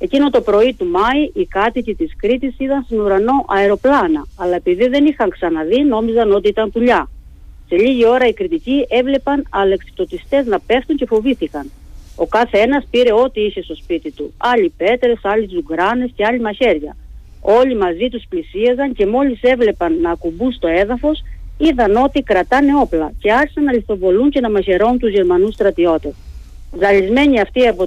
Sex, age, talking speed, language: female, 40-59, 165 wpm, Greek